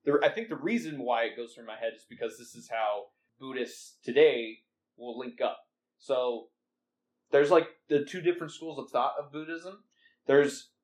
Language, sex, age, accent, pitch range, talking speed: English, male, 20-39, American, 120-165 Hz, 175 wpm